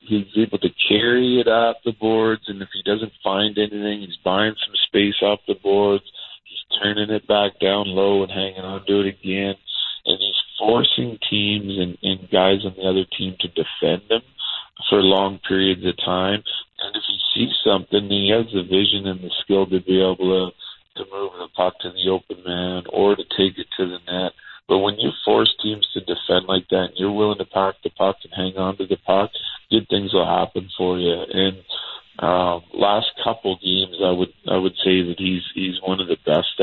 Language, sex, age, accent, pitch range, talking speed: English, male, 40-59, American, 95-105 Hz, 210 wpm